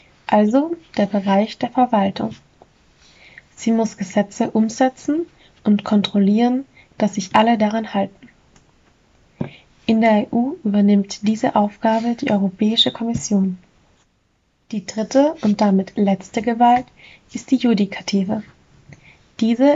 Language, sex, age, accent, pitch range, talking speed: German, female, 20-39, German, 205-240 Hz, 105 wpm